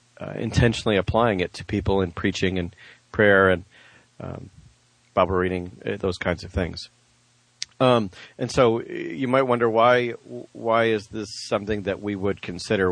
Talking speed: 160 wpm